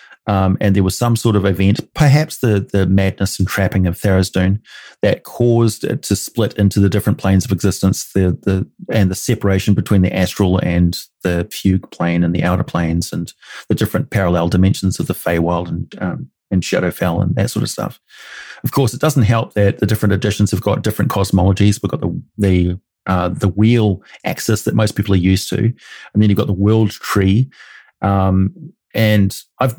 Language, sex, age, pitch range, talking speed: English, male, 30-49, 95-110 Hz, 195 wpm